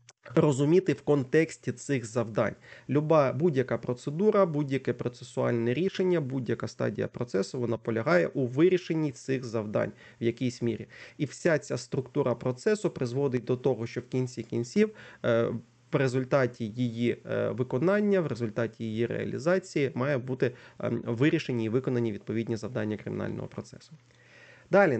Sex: male